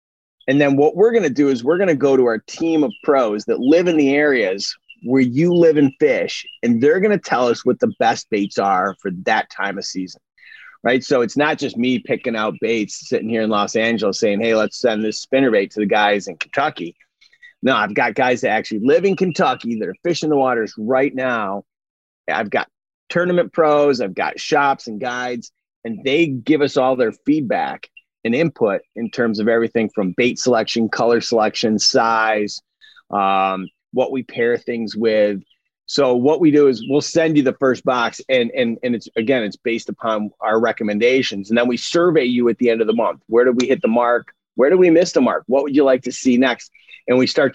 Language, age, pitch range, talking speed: English, 30-49, 115-165 Hz, 220 wpm